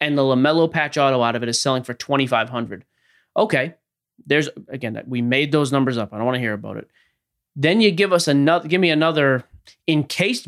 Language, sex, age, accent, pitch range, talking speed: English, male, 30-49, American, 130-170 Hz, 210 wpm